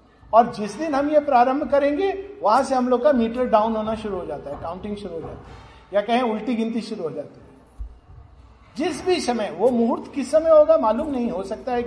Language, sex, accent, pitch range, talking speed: Hindi, male, native, 185-250 Hz, 230 wpm